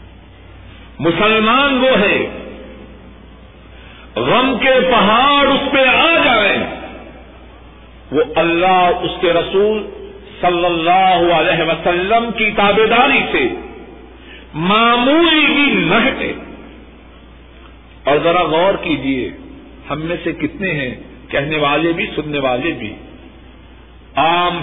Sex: male